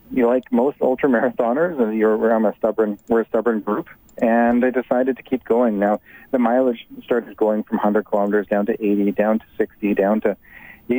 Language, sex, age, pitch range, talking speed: English, male, 40-59, 105-120 Hz, 180 wpm